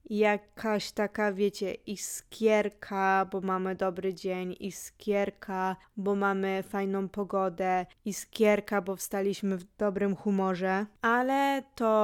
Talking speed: 105 wpm